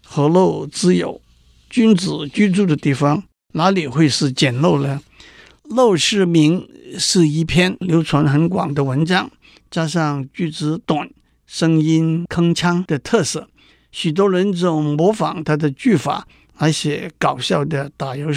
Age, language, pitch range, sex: 60-79, Chinese, 150-205 Hz, male